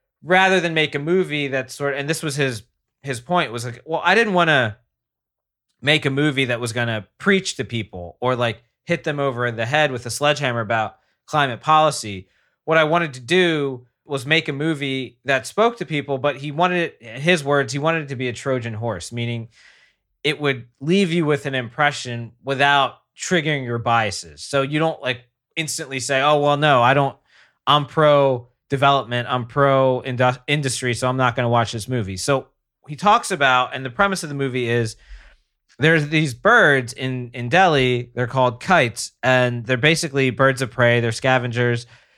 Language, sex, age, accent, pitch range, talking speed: English, male, 20-39, American, 120-145 Hz, 195 wpm